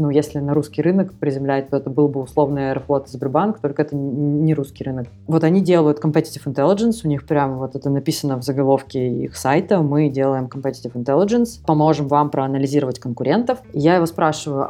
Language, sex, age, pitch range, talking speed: Russian, female, 20-39, 145-185 Hz, 180 wpm